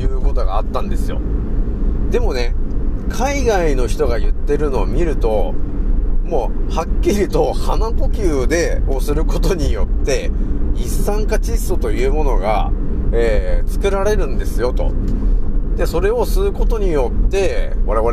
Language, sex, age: Japanese, male, 40-59